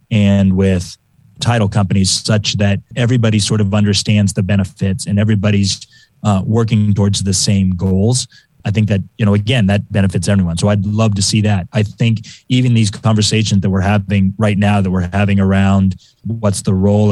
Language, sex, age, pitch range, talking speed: English, male, 30-49, 100-115 Hz, 180 wpm